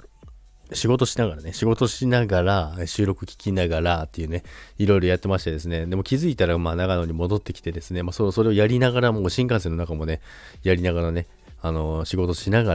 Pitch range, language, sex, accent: 85-105 Hz, Japanese, male, native